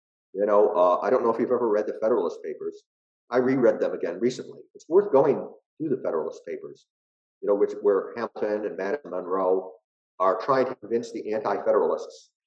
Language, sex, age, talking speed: English, male, 50-69, 190 wpm